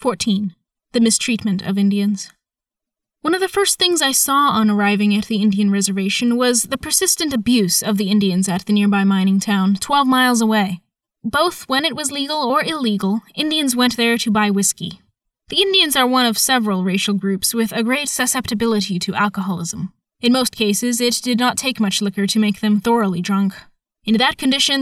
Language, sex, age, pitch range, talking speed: English, female, 10-29, 200-250 Hz, 185 wpm